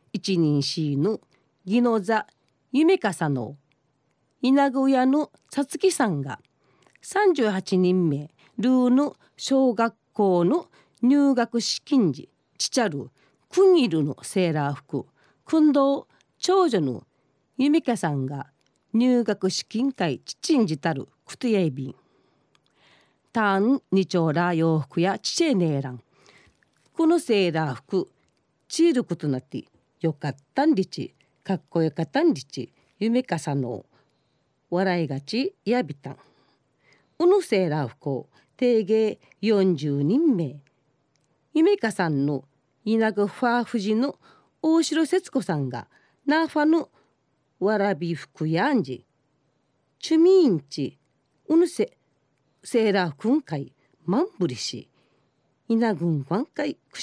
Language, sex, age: Japanese, female, 40-59